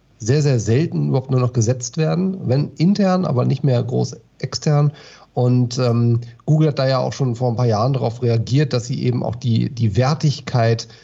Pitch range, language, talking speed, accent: 120-145 Hz, German, 195 wpm, German